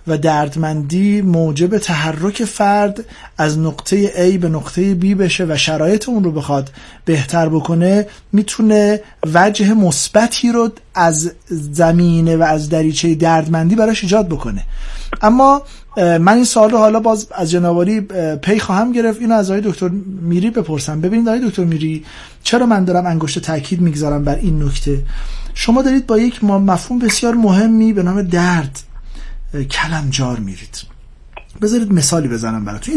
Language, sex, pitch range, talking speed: Persian, male, 150-195 Hz, 145 wpm